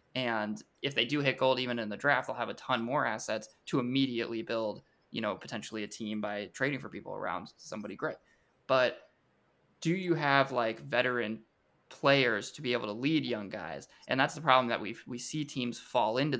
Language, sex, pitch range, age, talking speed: English, male, 115-145 Hz, 20-39, 205 wpm